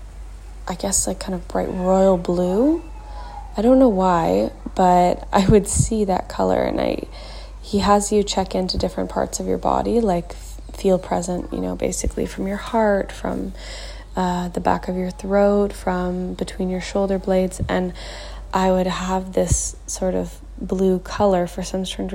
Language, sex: English, female